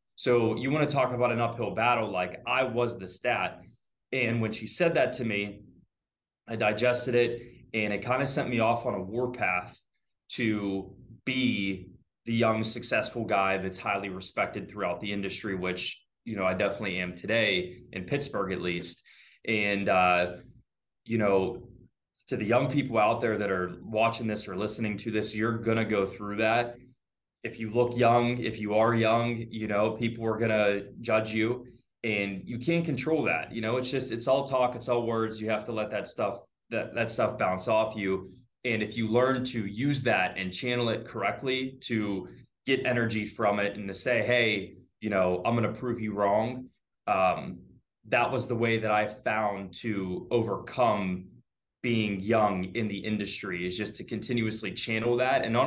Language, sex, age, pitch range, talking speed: English, male, 20-39, 100-120 Hz, 190 wpm